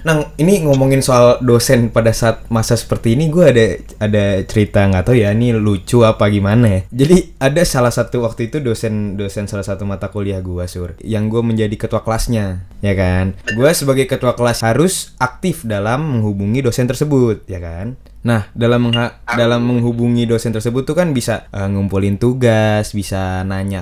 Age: 20-39